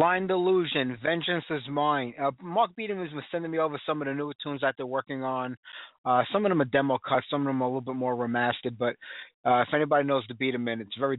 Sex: male